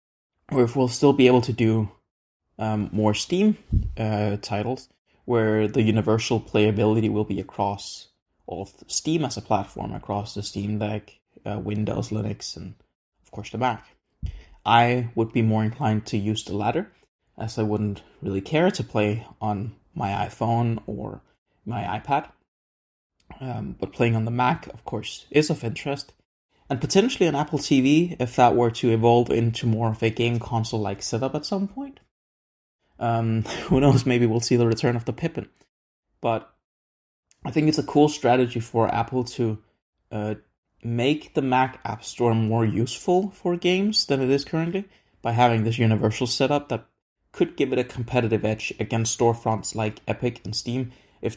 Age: 20-39